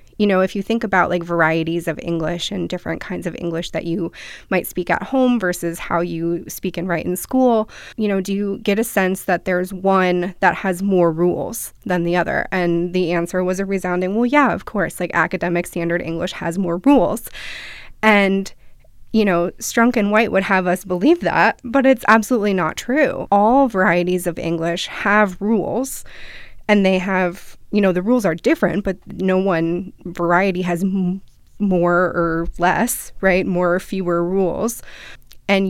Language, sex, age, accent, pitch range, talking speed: English, female, 20-39, American, 170-195 Hz, 180 wpm